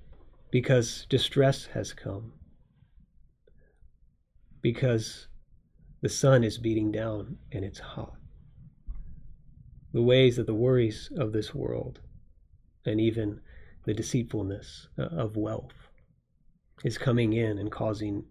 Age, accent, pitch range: 30-49, American, 105-140 Hz